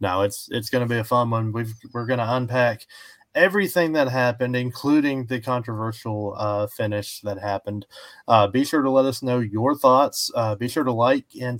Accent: American